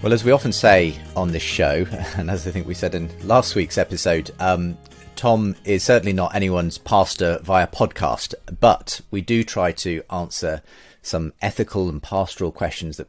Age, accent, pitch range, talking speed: 30-49, British, 80-100 Hz, 180 wpm